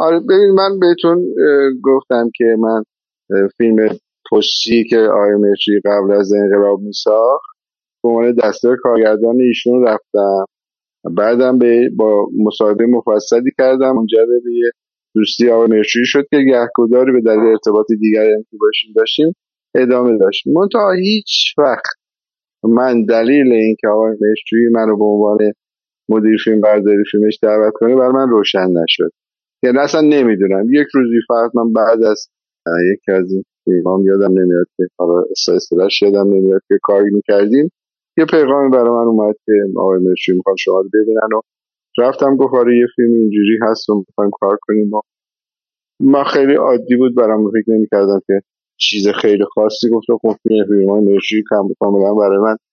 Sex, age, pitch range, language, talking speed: male, 50-69, 105-125 Hz, Persian, 155 wpm